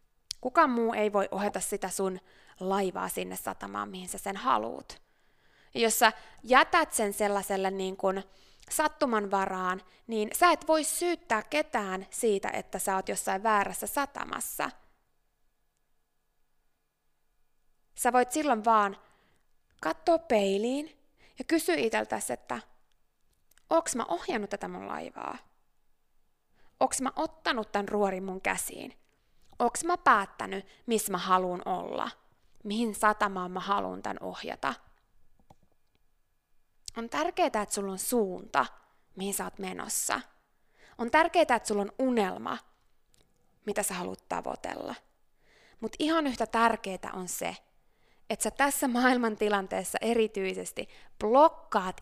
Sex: female